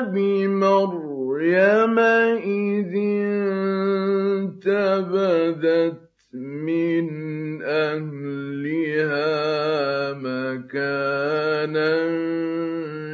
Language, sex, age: Arabic, male, 50-69